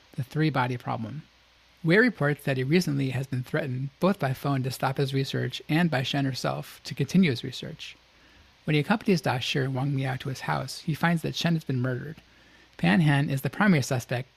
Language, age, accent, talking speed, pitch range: English, 30-49, American, 205 wpm, 130-155 Hz